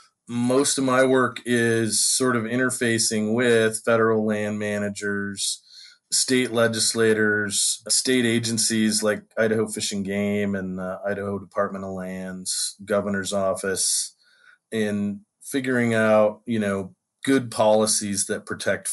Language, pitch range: English, 100-115 Hz